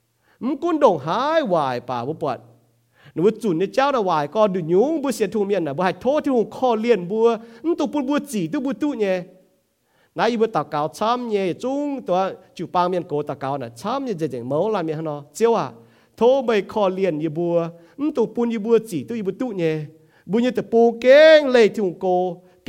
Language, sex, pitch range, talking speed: English, male, 155-240 Hz, 30 wpm